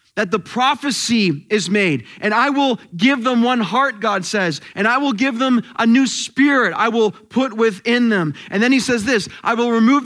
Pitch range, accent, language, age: 210-280 Hz, American, English, 30-49